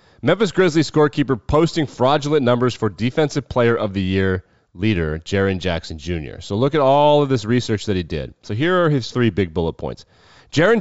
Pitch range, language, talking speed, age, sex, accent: 105-155 Hz, English, 195 wpm, 30-49, male, American